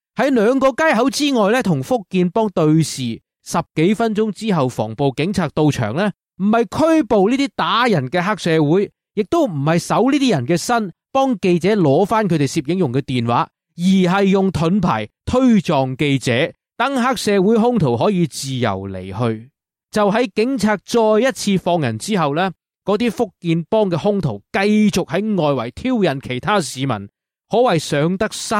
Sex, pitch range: male, 145-215 Hz